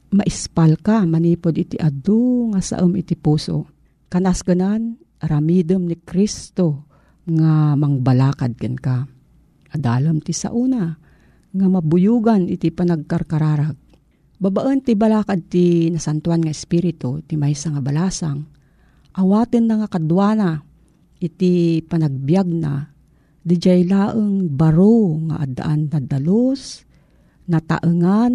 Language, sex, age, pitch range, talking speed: Filipino, female, 50-69, 160-210 Hz, 110 wpm